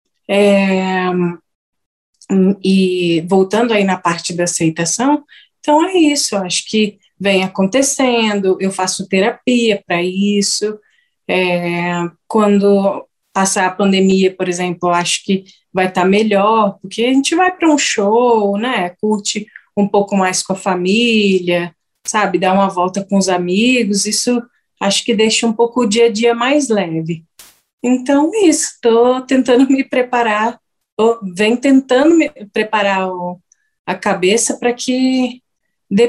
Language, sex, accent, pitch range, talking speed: English, female, Brazilian, 190-240 Hz, 140 wpm